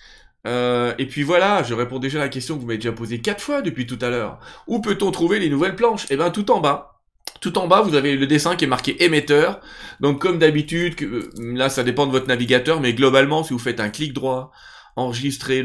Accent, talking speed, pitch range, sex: French, 235 wpm, 115-155 Hz, male